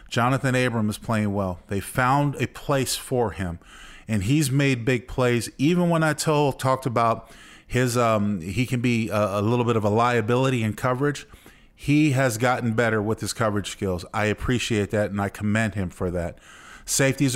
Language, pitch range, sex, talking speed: English, 105-125 Hz, male, 185 wpm